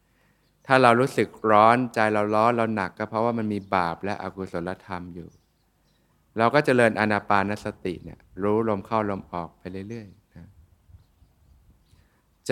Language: Thai